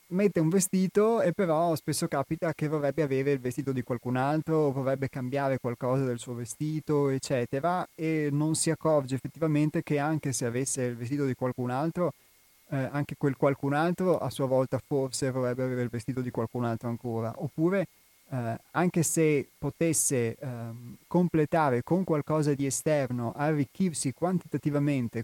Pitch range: 125-155 Hz